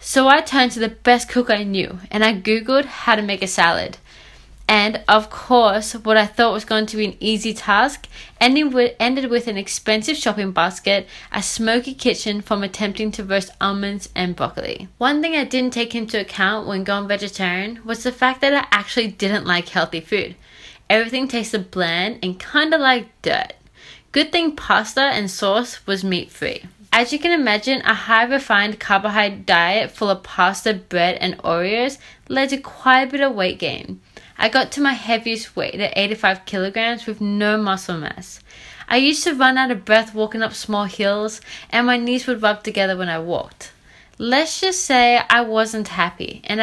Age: 20-39